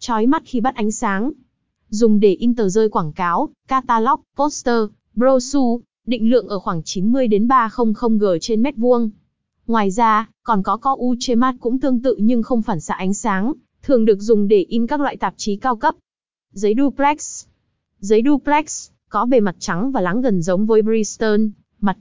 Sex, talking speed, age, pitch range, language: female, 190 wpm, 20-39, 205-255 Hz, Vietnamese